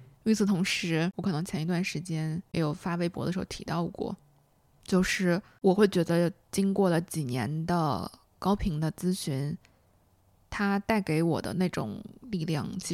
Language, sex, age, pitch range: Chinese, female, 20-39, 170-200 Hz